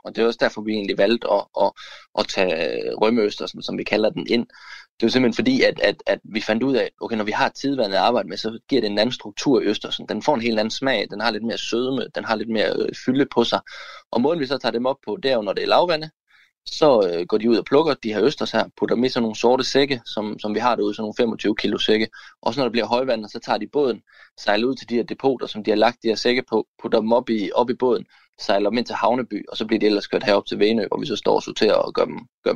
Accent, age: native, 20-39